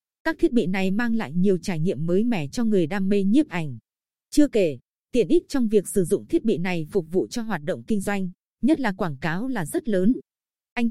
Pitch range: 190-235 Hz